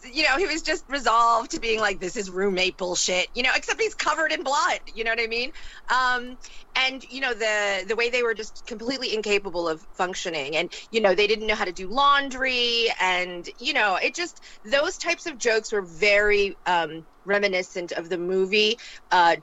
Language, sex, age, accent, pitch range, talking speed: English, female, 30-49, American, 180-235 Hz, 205 wpm